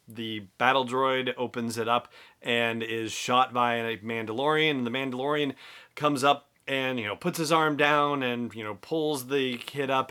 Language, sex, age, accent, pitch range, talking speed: English, male, 30-49, American, 115-145 Hz, 185 wpm